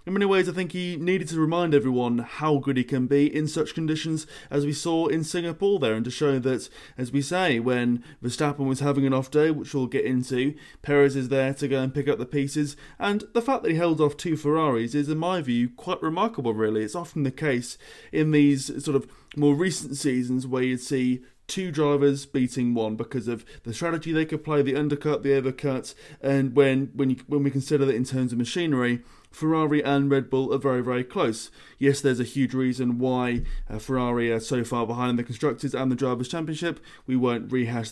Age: 20-39